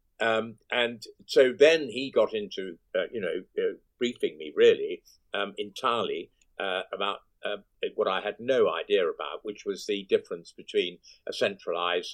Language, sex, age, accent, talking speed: English, male, 50-69, British, 160 wpm